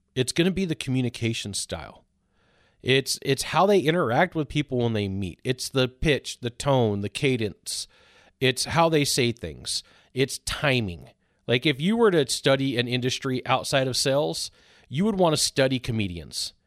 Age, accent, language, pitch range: 40-59, American, English, 110-140 Hz